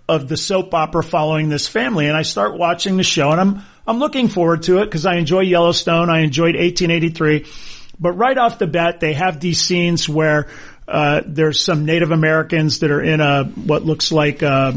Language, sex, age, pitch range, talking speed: English, male, 40-59, 150-175 Hz, 205 wpm